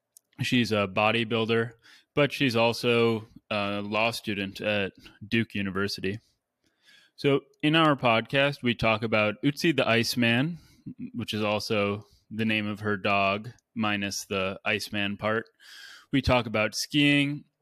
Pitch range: 100-120 Hz